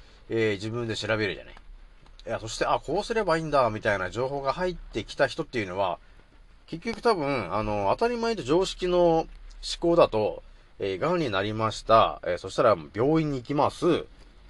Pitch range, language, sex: 110-185 Hz, Japanese, male